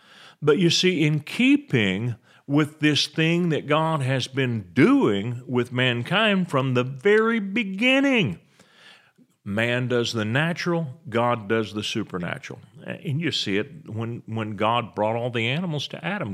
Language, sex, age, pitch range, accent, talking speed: English, male, 40-59, 105-150 Hz, American, 145 wpm